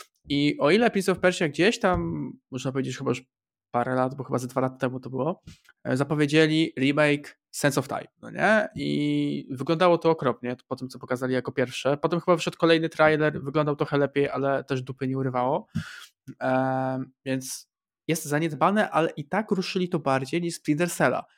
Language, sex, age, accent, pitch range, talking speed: Polish, male, 20-39, native, 130-160 Hz, 180 wpm